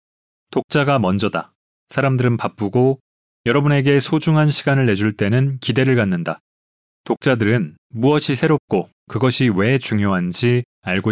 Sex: male